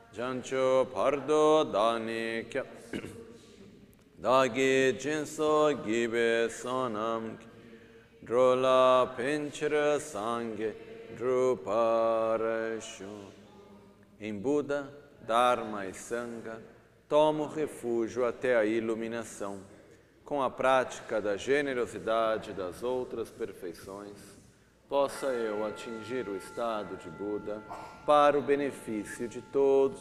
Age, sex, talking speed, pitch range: 40-59, male, 80 wpm, 110-130 Hz